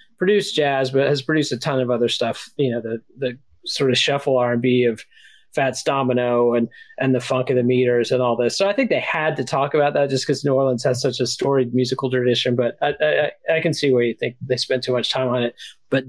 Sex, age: male, 40-59